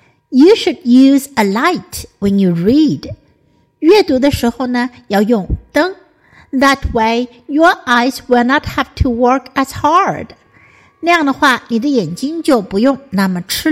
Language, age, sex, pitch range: Chinese, 60-79, female, 215-315 Hz